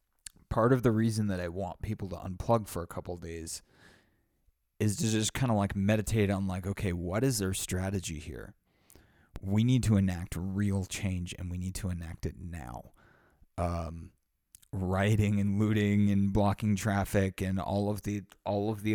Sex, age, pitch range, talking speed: male, 30-49, 90-105 Hz, 180 wpm